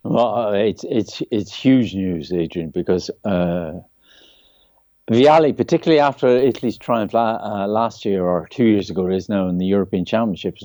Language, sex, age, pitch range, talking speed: English, male, 60-79, 95-115 Hz, 160 wpm